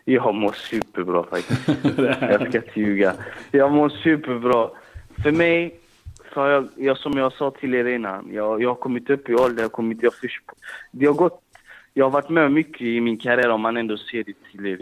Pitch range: 105-130 Hz